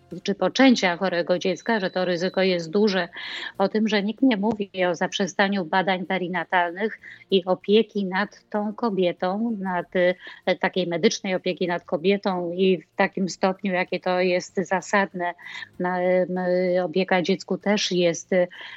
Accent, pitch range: native, 180-205 Hz